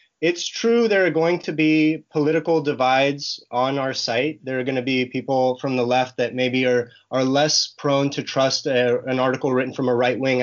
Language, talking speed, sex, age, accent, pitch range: English, 200 wpm, male, 30-49, American, 130-175 Hz